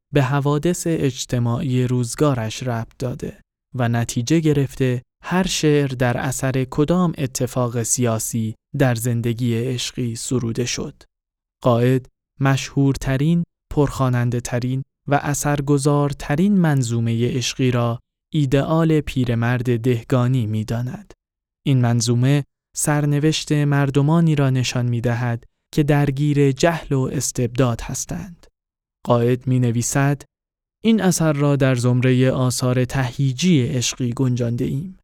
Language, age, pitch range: Persian, 20-39, 120-145 Hz